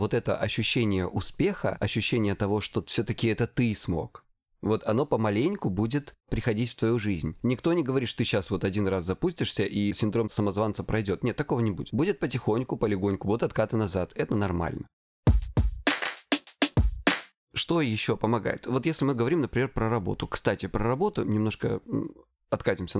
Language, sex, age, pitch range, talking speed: Russian, male, 20-39, 105-125 Hz, 155 wpm